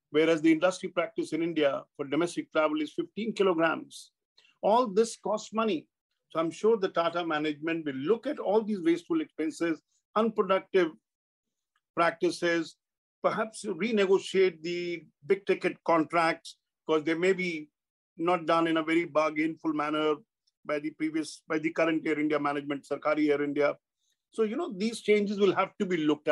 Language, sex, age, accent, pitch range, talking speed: English, male, 50-69, Indian, 160-205 Hz, 160 wpm